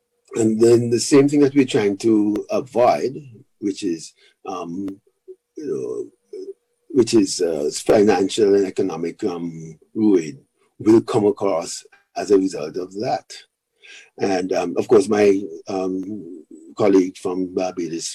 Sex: male